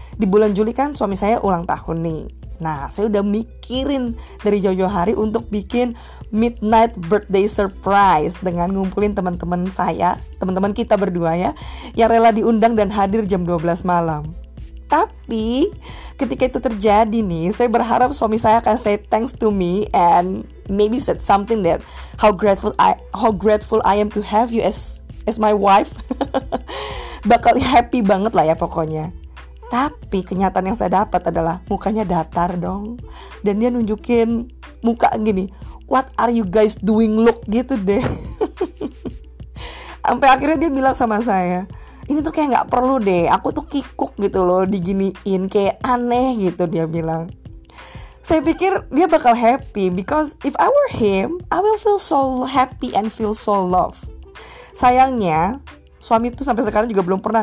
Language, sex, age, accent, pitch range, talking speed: Indonesian, female, 20-39, native, 190-240 Hz, 155 wpm